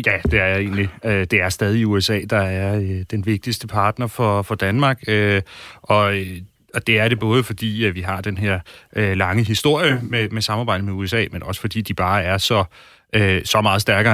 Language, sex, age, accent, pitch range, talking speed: Danish, male, 30-49, native, 100-120 Hz, 180 wpm